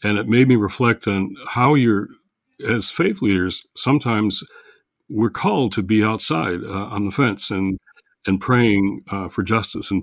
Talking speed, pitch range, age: 170 wpm, 95-115 Hz, 60-79